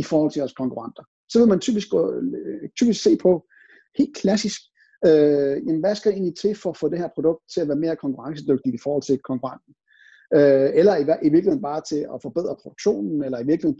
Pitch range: 140-215 Hz